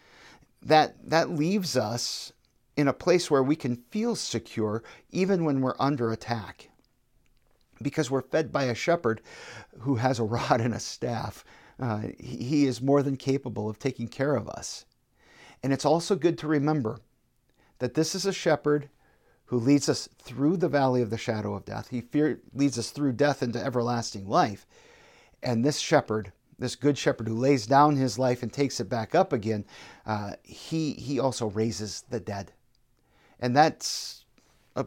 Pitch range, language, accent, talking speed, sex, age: 115-145 Hz, English, American, 170 wpm, male, 50-69